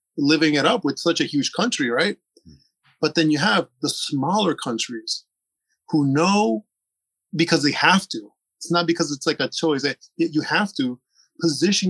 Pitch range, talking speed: 145-185 Hz, 170 wpm